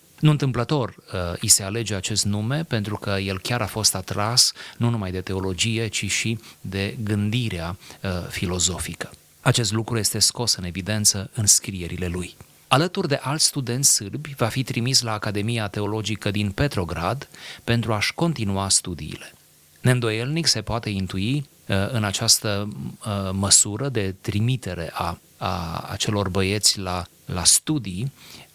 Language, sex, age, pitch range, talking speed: Romanian, male, 30-49, 95-120 Hz, 130 wpm